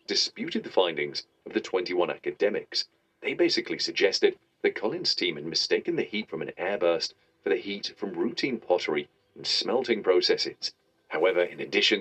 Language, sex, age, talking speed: English, male, 40-59, 160 wpm